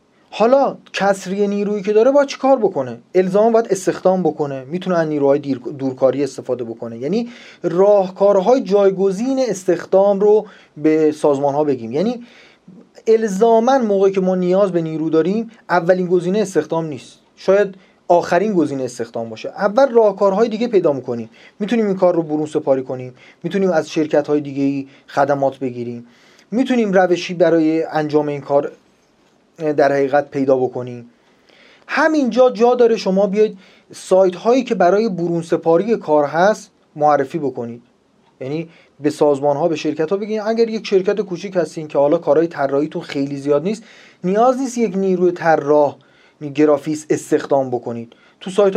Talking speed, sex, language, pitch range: 150 wpm, male, Persian, 145-205 Hz